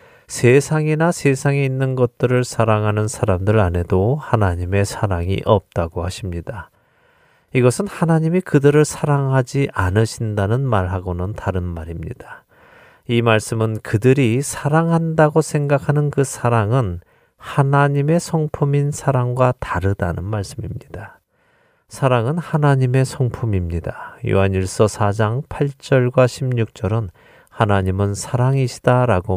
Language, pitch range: Korean, 100-140 Hz